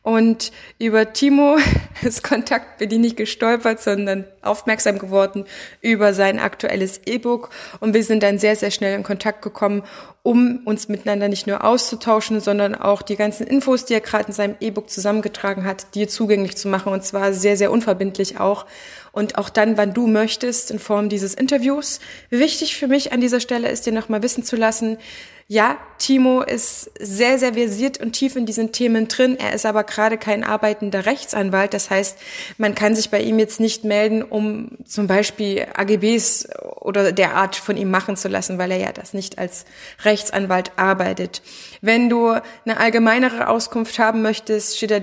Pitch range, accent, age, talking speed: 200-225 Hz, German, 20-39, 180 wpm